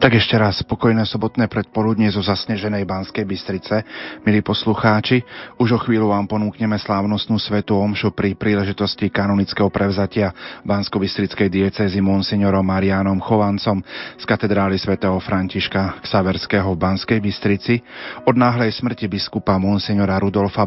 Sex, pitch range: male, 95-105 Hz